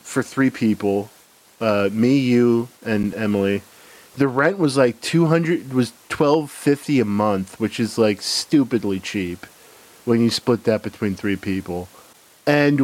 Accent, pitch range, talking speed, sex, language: American, 105-140 Hz, 150 wpm, male, English